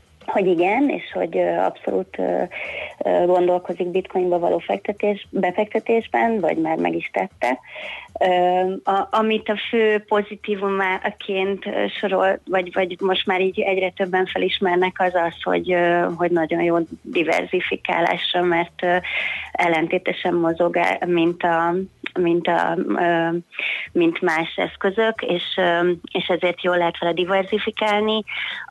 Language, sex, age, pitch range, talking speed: Hungarian, female, 30-49, 175-200 Hz, 105 wpm